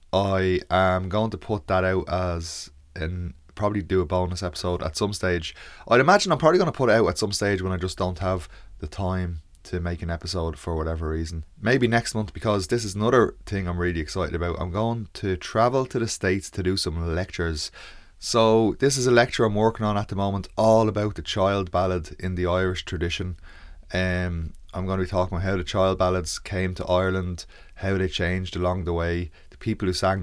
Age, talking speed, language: 20-39, 215 wpm, English